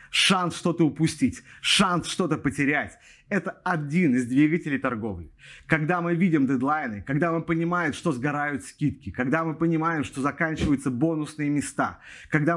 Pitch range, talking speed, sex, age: 130-170 Hz, 140 wpm, male, 30-49